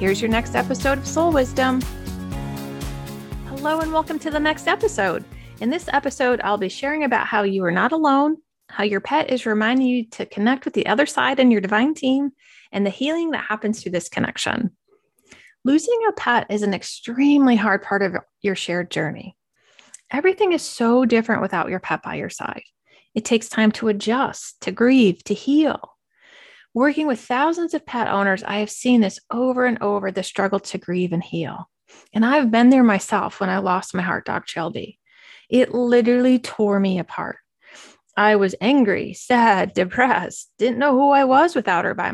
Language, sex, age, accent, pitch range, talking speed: English, female, 30-49, American, 195-275 Hz, 185 wpm